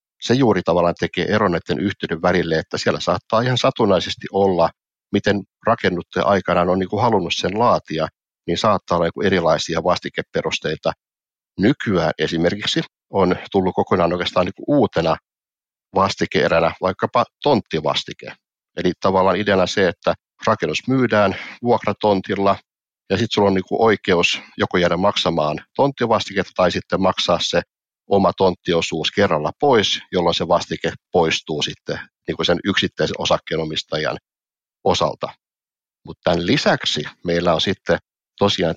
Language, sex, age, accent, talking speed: English, male, 60-79, Finnish, 120 wpm